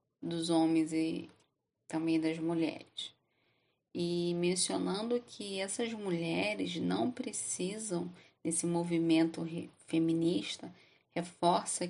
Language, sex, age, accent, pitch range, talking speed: Portuguese, female, 10-29, Brazilian, 160-180 Hz, 85 wpm